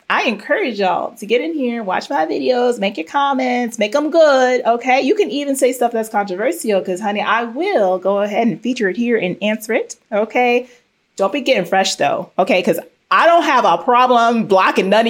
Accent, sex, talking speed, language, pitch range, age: American, female, 205 wpm, English, 190-260 Hz, 30-49